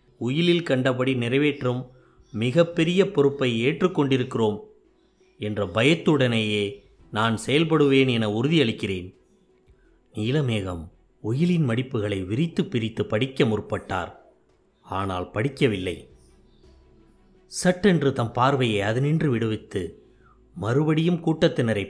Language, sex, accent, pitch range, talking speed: Tamil, male, native, 115-145 Hz, 80 wpm